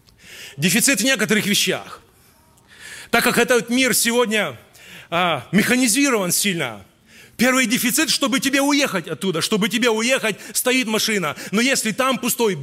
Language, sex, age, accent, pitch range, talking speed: Russian, male, 30-49, native, 185-245 Hz, 125 wpm